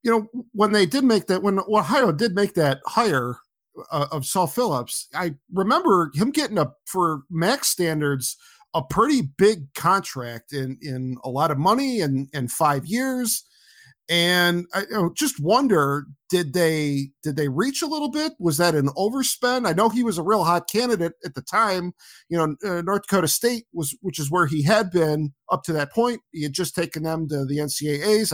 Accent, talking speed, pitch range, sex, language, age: American, 200 wpm, 150-195 Hz, male, English, 40-59